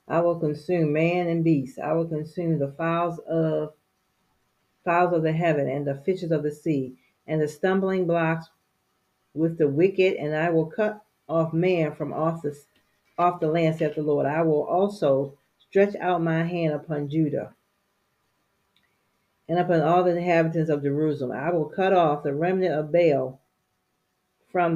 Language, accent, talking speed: English, American, 160 wpm